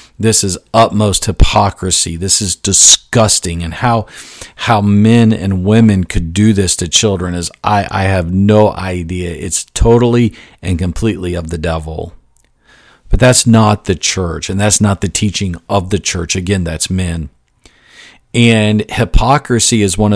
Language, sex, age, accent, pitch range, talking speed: English, male, 40-59, American, 95-115 Hz, 150 wpm